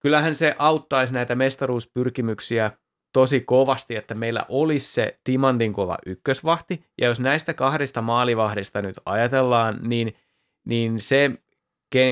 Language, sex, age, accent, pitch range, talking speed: Finnish, male, 20-39, native, 110-140 Hz, 125 wpm